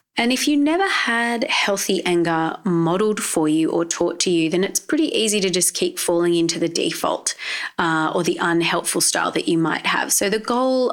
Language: English